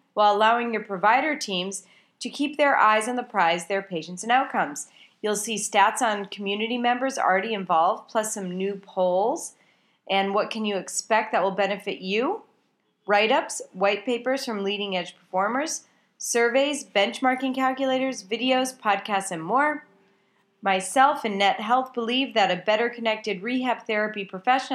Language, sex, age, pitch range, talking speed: English, female, 30-49, 195-250 Hz, 150 wpm